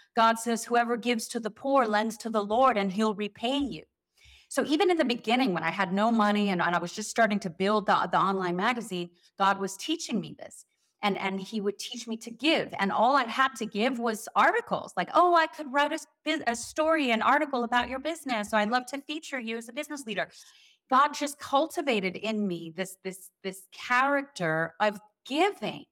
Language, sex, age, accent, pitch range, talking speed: English, female, 30-49, American, 195-260 Hz, 210 wpm